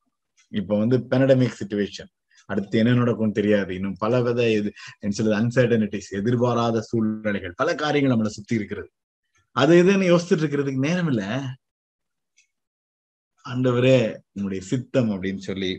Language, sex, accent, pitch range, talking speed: Tamil, male, native, 95-125 Hz, 115 wpm